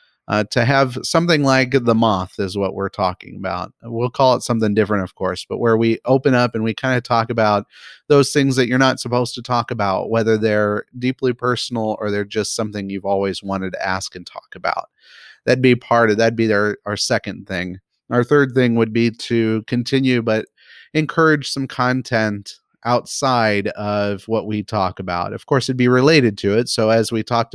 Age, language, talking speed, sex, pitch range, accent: 30-49, English, 205 wpm, male, 100-125 Hz, American